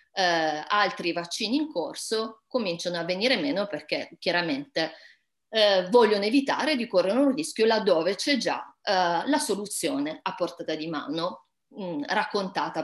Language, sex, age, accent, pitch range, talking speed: Italian, female, 30-49, native, 170-205 Hz, 120 wpm